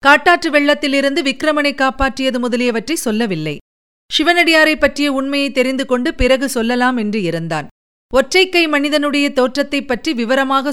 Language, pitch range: Tamil, 215-270 Hz